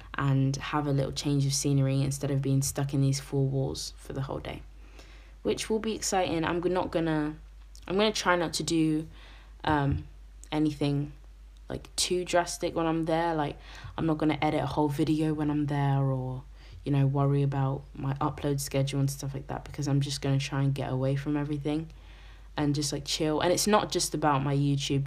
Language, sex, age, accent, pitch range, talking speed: English, female, 20-39, British, 135-150 Hz, 200 wpm